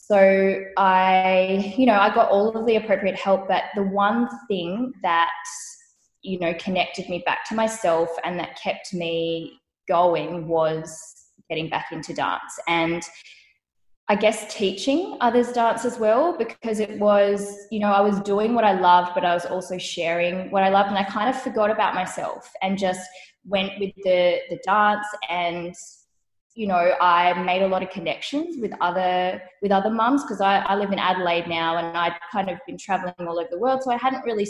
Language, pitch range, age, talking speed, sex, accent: English, 175-205 Hz, 20-39, 190 wpm, female, Australian